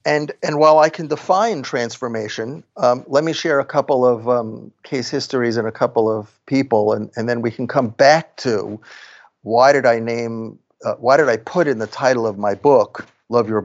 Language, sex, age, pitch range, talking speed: English, male, 50-69, 115-145 Hz, 205 wpm